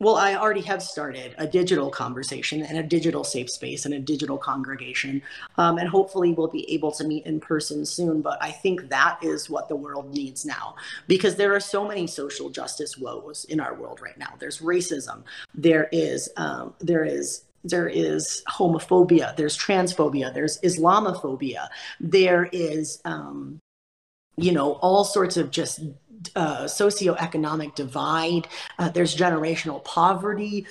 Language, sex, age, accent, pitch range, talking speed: English, female, 30-49, American, 145-175 Hz, 160 wpm